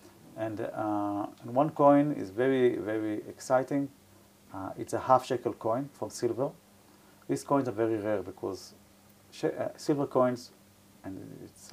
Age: 50-69